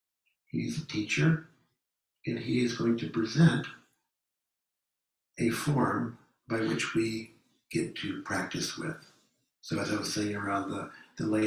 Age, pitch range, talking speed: 60-79, 110-160 Hz, 140 wpm